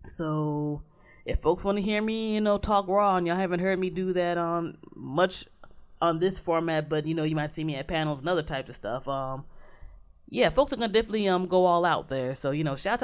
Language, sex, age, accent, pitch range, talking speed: English, female, 20-39, American, 135-195 Hz, 245 wpm